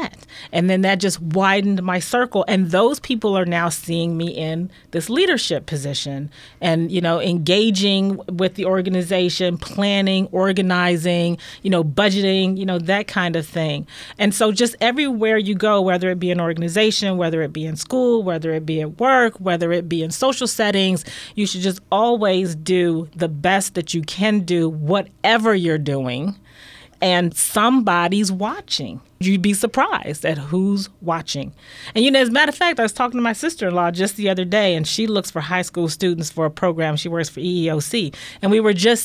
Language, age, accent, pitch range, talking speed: English, 30-49, American, 175-220 Hz, 185 wpm